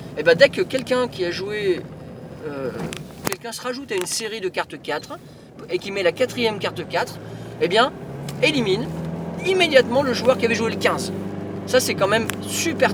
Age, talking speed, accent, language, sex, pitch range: 40-59, 200 wpm, French, French, male, 175-255 Hz